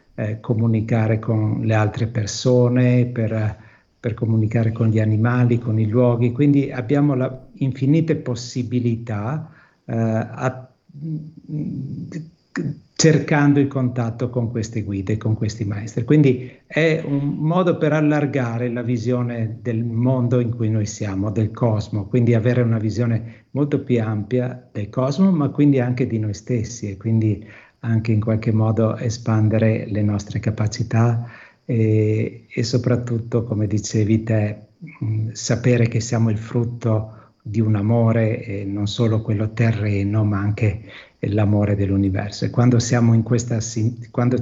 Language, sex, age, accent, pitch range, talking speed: Italian, male, 60-79, native, 110-125 Hz, 135 wpm